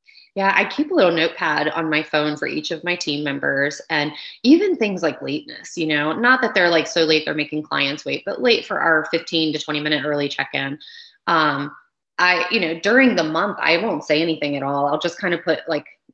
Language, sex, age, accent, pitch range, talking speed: English, female, 30-49, American, 150-180 Hz, 230 wpm